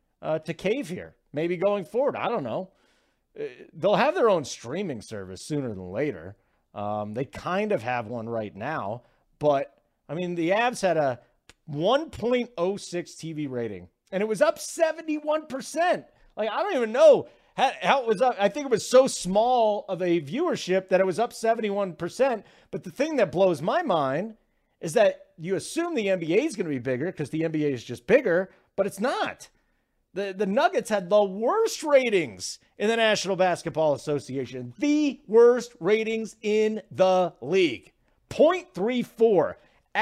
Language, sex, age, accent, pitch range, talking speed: English, male, 40-59, American, 140-230 Hz, 170 wpm